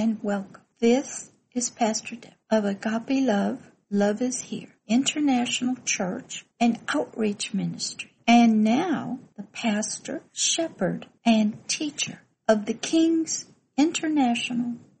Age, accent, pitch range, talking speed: 60-79, American, 215-265 Hz, 110 wpm